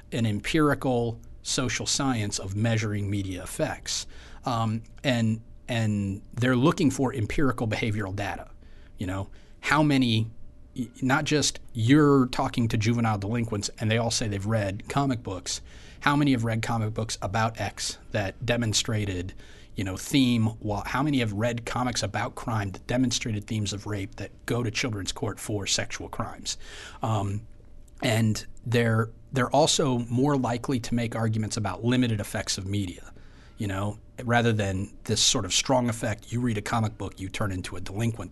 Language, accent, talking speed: English, American, 160 wpm